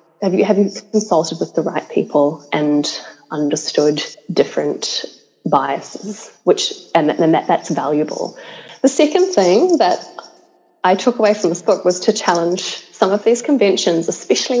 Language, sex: English, female